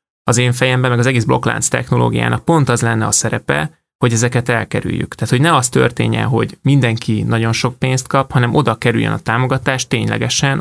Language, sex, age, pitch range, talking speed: Hungarian, male, 20-39, 115-130 Hz, 185 wpm